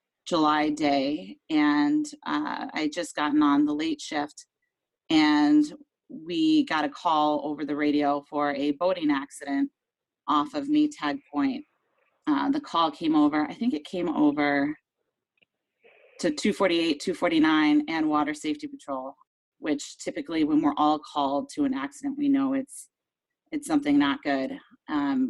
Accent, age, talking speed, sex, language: American, 30-49, 145 wpm, female, English